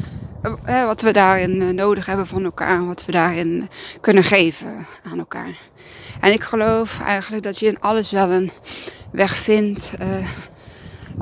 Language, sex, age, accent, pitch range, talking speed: Dutch, female, 20-39, Dutch, 170-205 Hz, 145 wpm